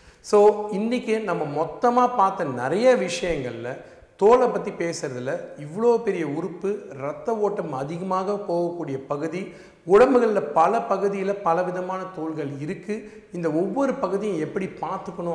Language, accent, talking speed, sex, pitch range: Tamil, native, 115 wpm, male, 140-195 Hz